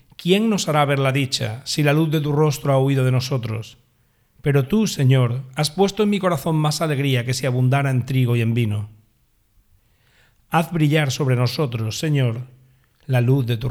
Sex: male